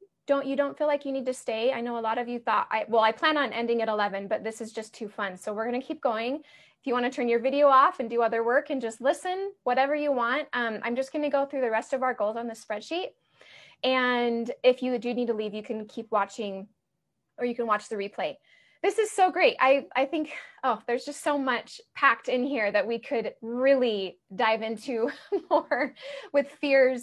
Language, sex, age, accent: English, female, 20-39, American